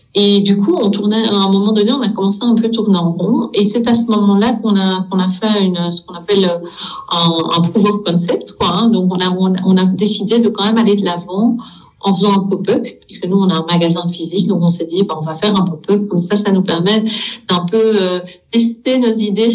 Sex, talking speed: female, 250 wpm